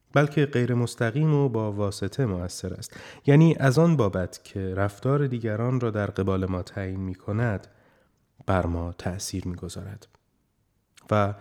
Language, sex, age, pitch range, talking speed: Persian, male, 30-49, 100-130 Hz, 130 wpm